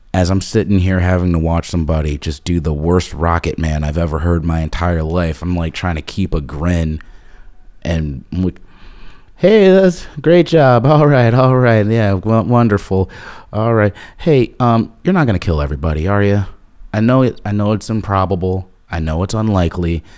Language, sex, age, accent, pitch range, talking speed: English, male, 30-49, American, 80-105 Hz, 185 wpm